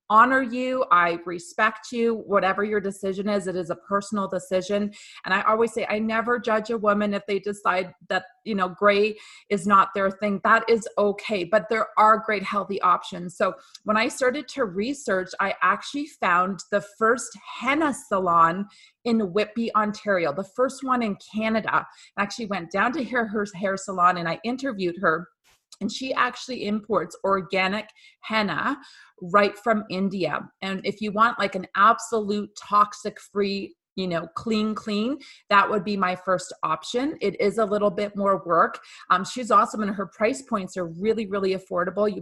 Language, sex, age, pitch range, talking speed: English, female, 30-49, 190-225 Hz, 175 wpm